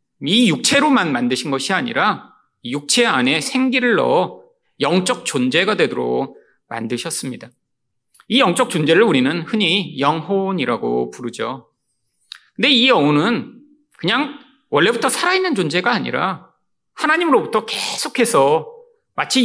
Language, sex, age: Korean, male, 40-59